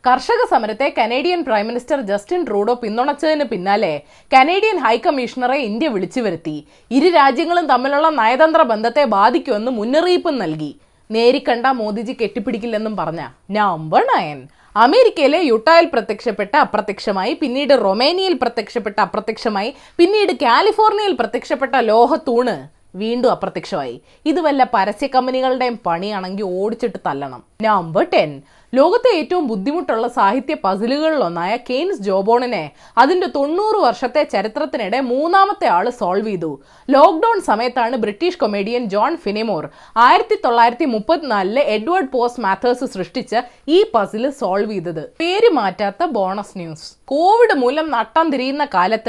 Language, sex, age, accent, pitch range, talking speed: Malayalam, female, 20-39, native, 215-315 Hz, 110 wpm